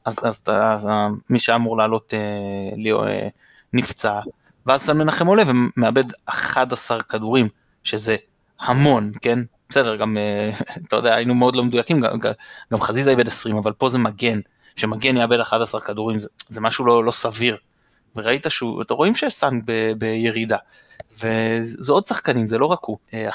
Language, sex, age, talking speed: Hebrew, male, 20-39, 165 wpm